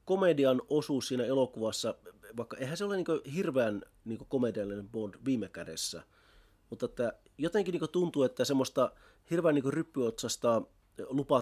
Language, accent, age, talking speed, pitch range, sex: Finnish, native, 30-49, 135 wpm, 105-140 Hz, male